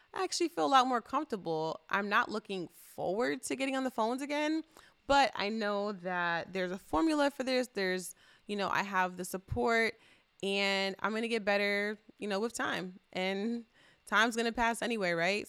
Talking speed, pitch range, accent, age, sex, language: 195 wpm, 195-255 Hz, American, 20-39, female, English